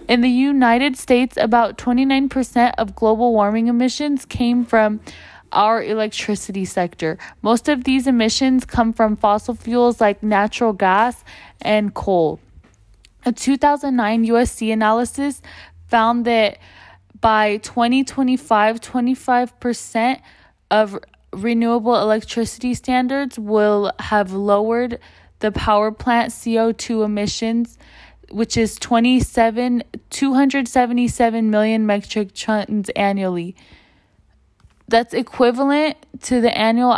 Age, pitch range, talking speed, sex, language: 20-39, 210-245 Hz, 100 wpm, female, English